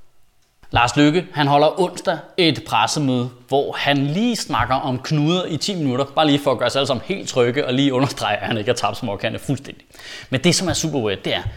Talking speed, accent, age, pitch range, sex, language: 230 wpm, native, 30-49, 145-230 Hz, male, Danish